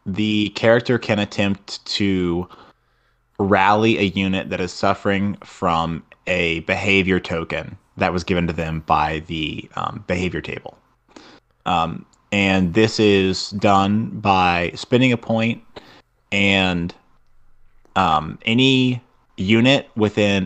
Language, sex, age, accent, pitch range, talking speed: English, male, 30-49, American, 90-105 Hz, 115 wpm